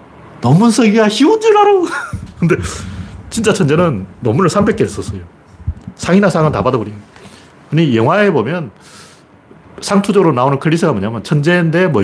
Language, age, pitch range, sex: Korean, 40-59, 125-200 Hz, male